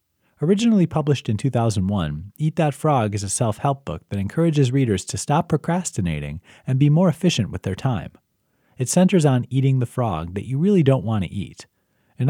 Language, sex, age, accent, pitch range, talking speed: English, male, 30-49, American, 105-150 Hz, 185 wpm